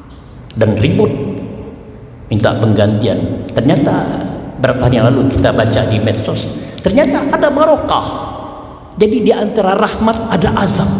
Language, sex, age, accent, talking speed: Indonesian, male, 60-79, native, 115 wpm